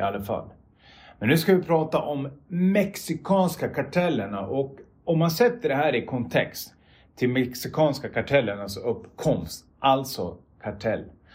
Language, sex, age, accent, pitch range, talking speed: Swedish, male, 30-49, native, 100-145 Hz, 120 wpm